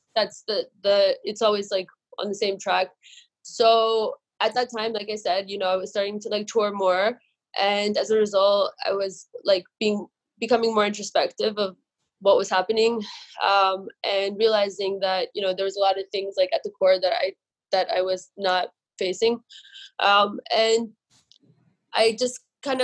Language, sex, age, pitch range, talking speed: English, female, 20-39, 195-235 Hz, 180 wpm